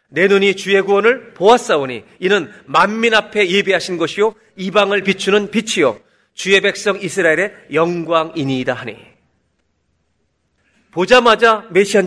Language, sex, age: Korean, male, 40-59